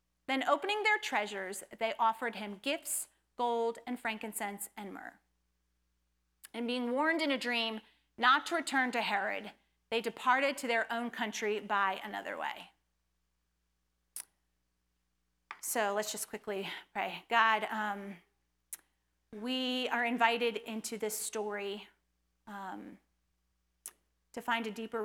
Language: English